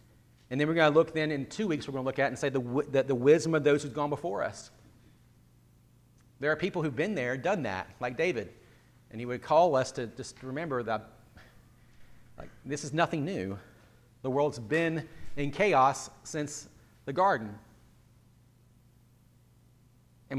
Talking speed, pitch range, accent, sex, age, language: 180 wpm, 120-155 Hz, American, male, 40-59, English